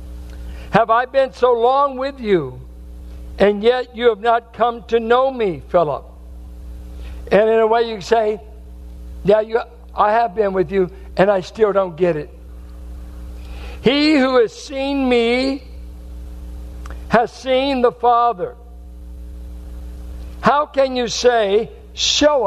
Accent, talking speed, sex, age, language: American, 130 wpm, male, 60-79, English